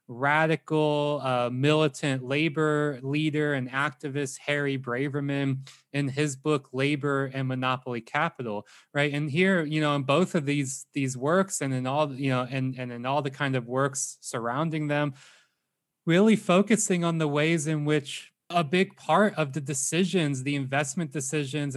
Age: 20-39